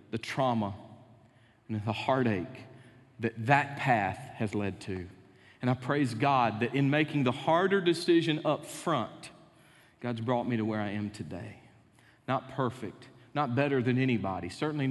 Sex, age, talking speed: male, 40-59, 155 wpm